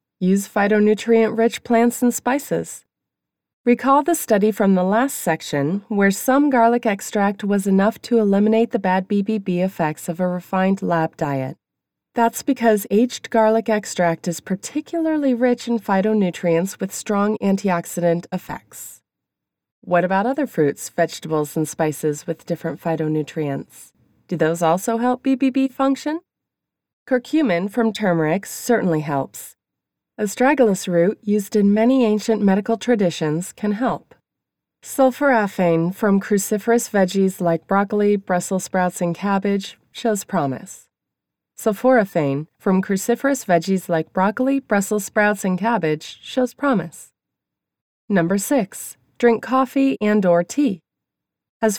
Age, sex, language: 30-49, female, English